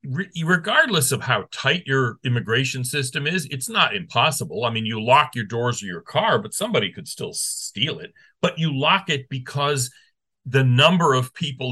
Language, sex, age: English, male, 40-59